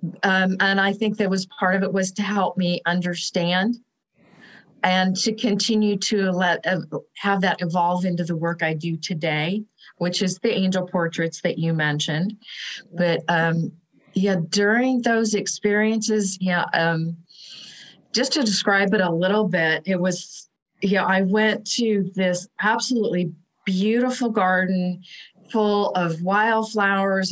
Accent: American